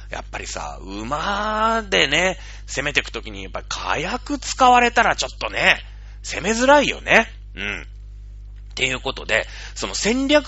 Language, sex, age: Japanese, male, 30-49